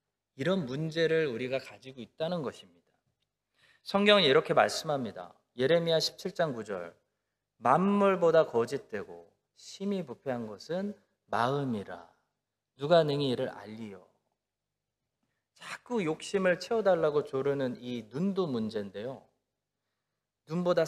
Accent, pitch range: native, 130-195 Hz